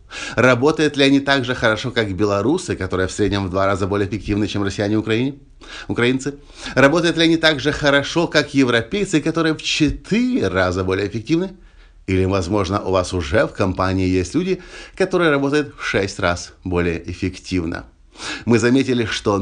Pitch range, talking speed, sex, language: 95-135 Hz, 165 wpm, male, Russian